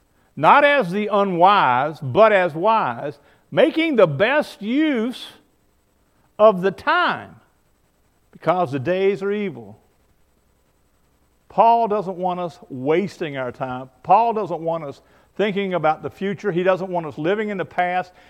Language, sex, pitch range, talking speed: English, male, 145-215 Hz, 140 wpm